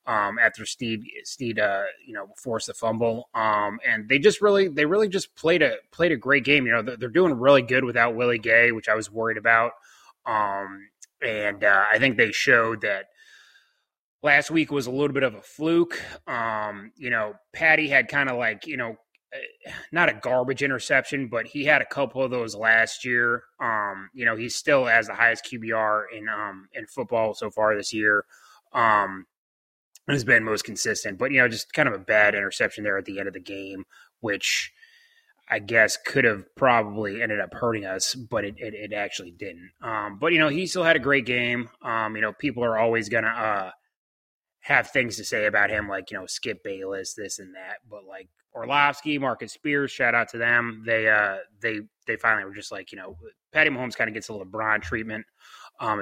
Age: 20-39